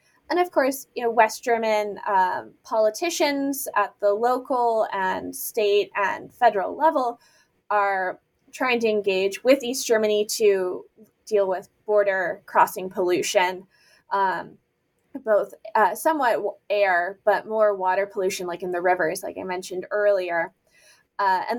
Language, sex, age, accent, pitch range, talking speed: English, female, 20-39, American, 200-280 Hz, 135 wpm